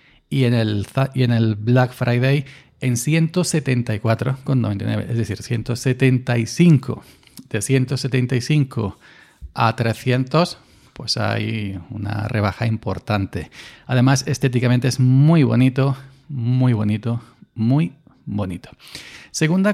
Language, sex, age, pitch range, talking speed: Spanish, male, 40-59, 115-140 Hz, 90 wpm